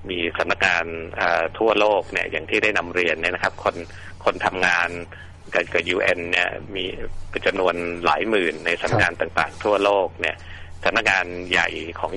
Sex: male